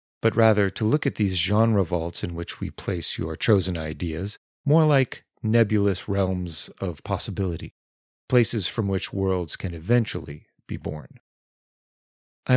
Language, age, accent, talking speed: English, 40-59, American, 145 wpm